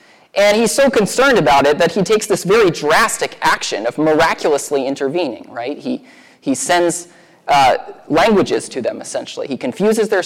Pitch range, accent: 135-195 Hz, American